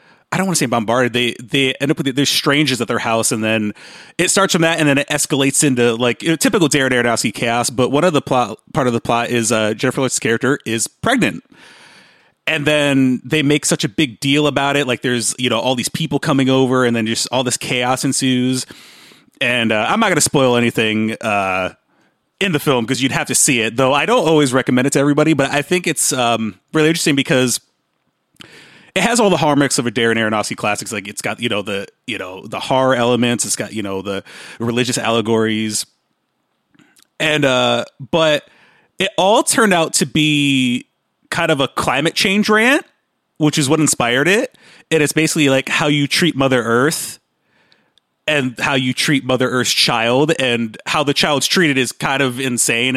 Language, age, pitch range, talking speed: English, 30-49, 120-150 Hz, 205 wpm